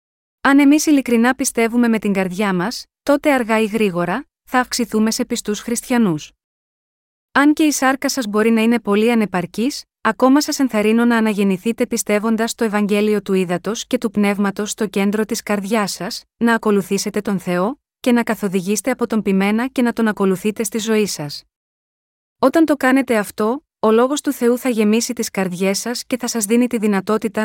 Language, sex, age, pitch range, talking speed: Greek, female, 30-49, 205-245 Hz, 175 wpm